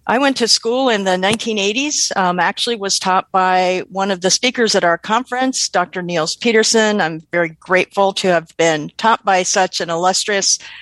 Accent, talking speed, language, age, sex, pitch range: American, 185 wpm, English, 50-69, female, 185-245 Hz